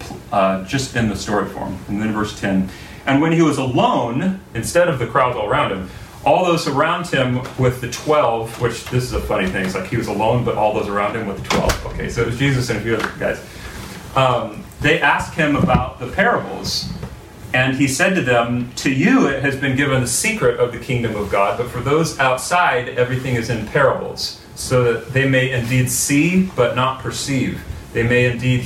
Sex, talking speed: male, 215 wpm